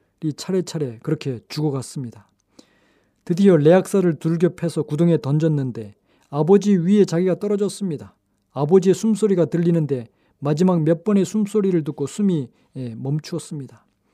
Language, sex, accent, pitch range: Korean, male, native, 140-190 Hz